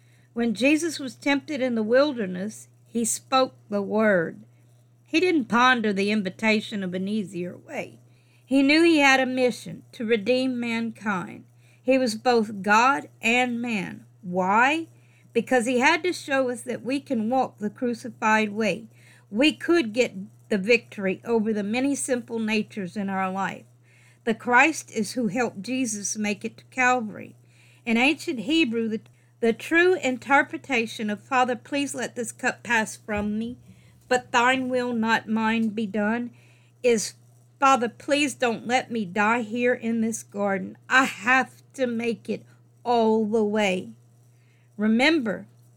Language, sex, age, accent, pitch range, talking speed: English, female, 50-69, American, 190-250 Hz, 150 wpm